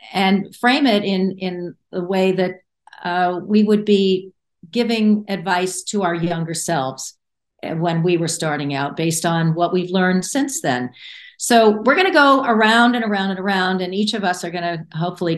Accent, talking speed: American, 180 wpm